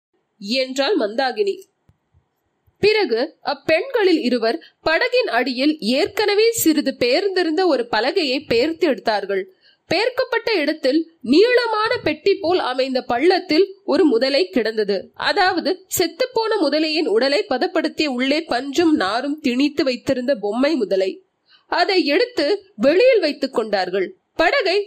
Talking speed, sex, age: 90 wpm, female, 30-49